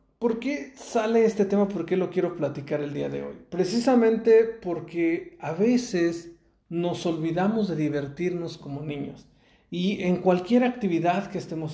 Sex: male